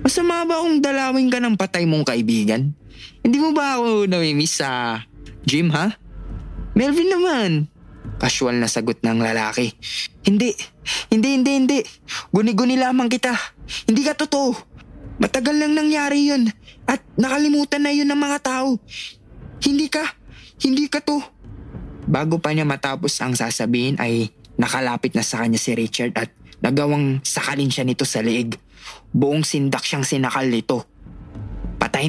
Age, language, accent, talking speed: 20-39, English, Filipino, 140 wpm